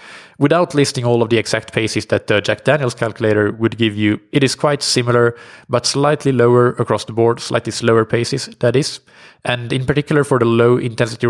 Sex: male